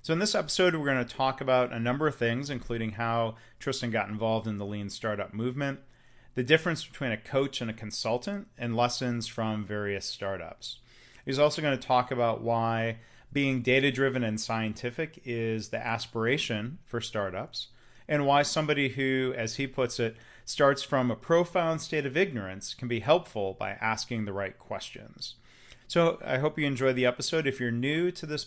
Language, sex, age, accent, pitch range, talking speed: English, male, 30-49, American, 110-130 Hz, 185 wpm